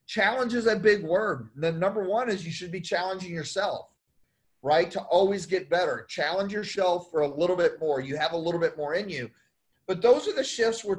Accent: American